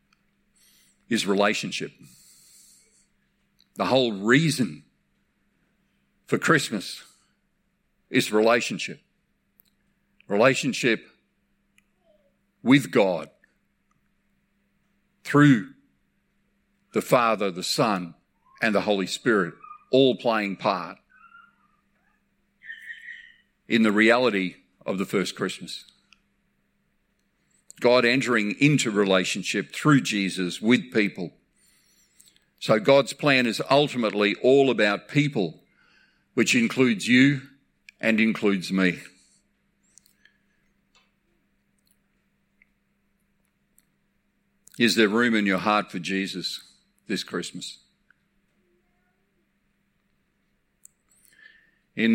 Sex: male